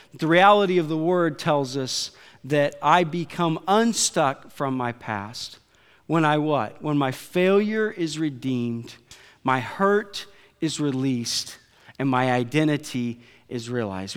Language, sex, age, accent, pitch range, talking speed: English, male, 40-59, American, 125-165 Hz, 130 wpm